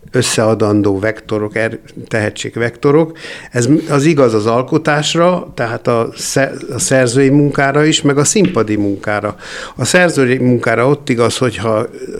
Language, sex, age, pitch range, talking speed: Hungarian, male, 60-79, 115-145 Hz, 120 wpm